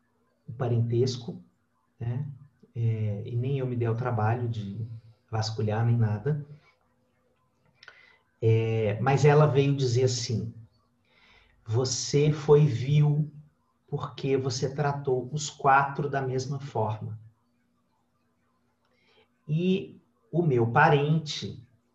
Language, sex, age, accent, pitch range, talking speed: Portuguese, male, 40-59, Brazilian, 115-150 Hz, 90 wpm